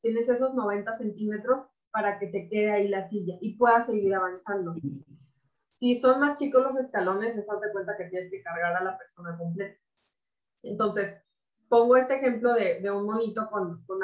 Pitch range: 185-235 Hz